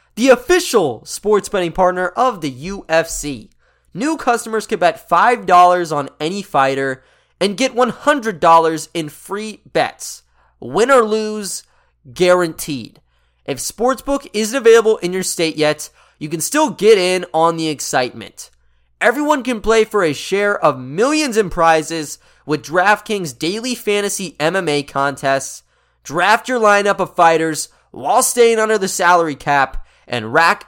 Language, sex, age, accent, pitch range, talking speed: English, male, 20-39, American, 155-220 Hz, 140 wpm